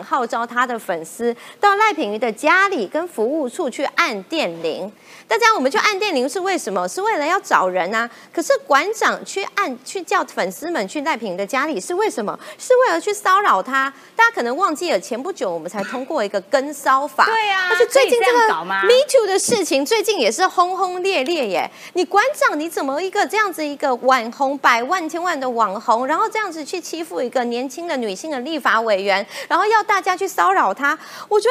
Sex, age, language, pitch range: female, 30-49, Chinese, 250-395 Hz